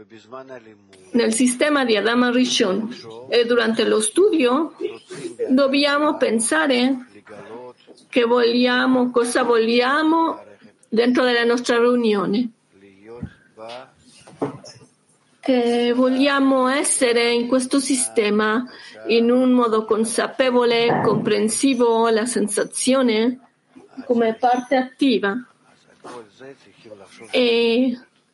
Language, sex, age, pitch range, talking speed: Italian, female, 50-69, 225-265 Hz, 75 wpm